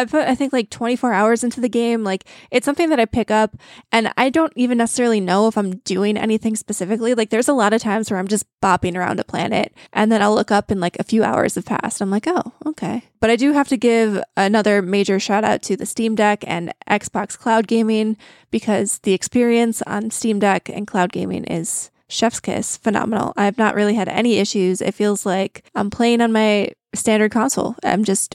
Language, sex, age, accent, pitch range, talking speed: English, female, 20-39, American, 205-235 Hz, 220 wpm